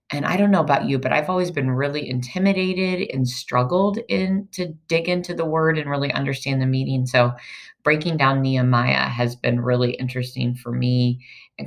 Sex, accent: female, American